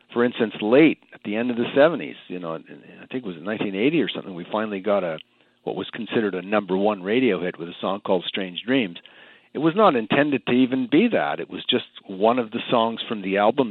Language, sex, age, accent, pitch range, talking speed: English, male, 50-69, American, 105-145 Hz, 235 wpm